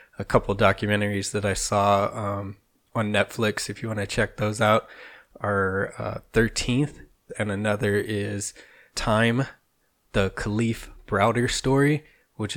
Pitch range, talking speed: 100-110 Hz, 135 wpm